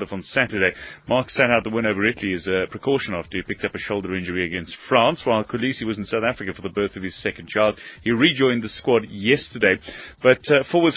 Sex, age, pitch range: male, 30-49, 105-145 Hz